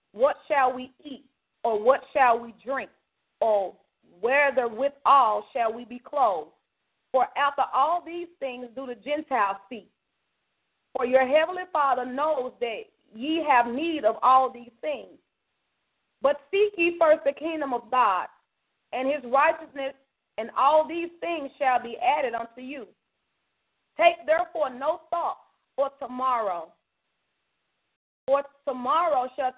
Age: 40-59